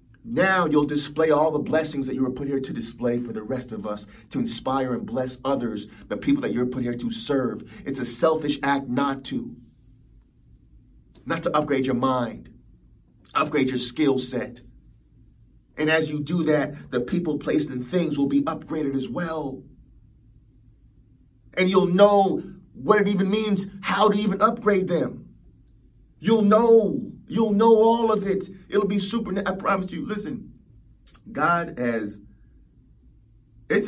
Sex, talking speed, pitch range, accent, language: male, 160 wpm, 115-160 Hz, American, English